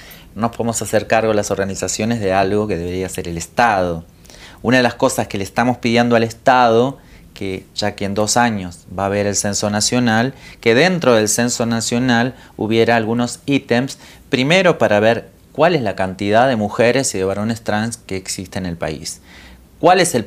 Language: Spanish